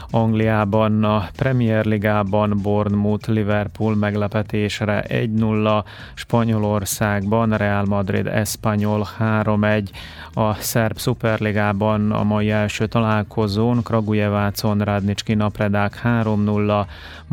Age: 30-49